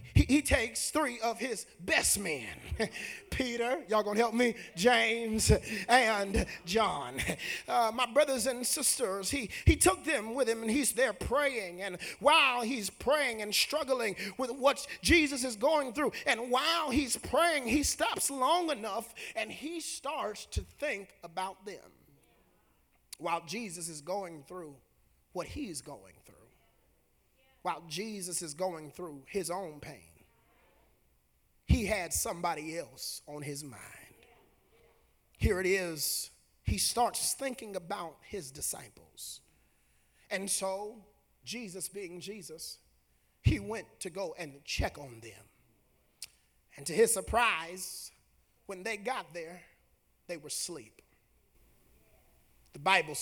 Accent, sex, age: American, male, 30-49